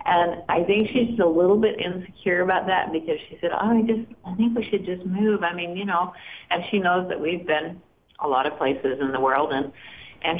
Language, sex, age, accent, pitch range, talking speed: English, female, 50-69, American, 165-210 Hz, 225 wpm